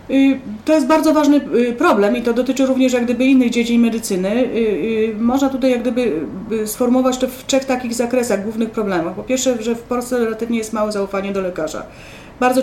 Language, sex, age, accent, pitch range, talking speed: Polish, female, 40-59, native, 205-250 Hz, 180 wpm